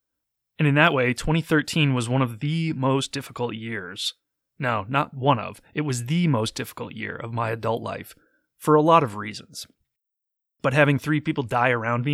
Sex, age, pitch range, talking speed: male, 20-39, 120-155 Hz, 190 wpm